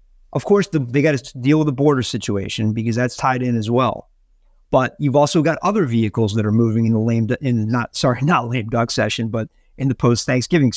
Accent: American